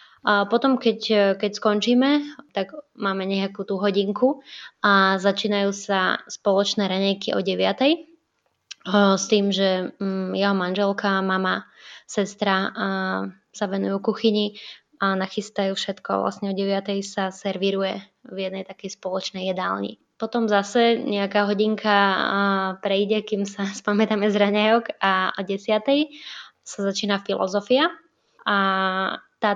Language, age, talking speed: Slovak, 20-39, 115 wpm